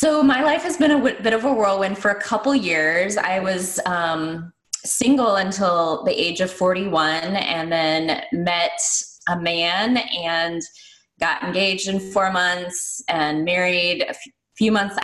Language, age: English, 20-39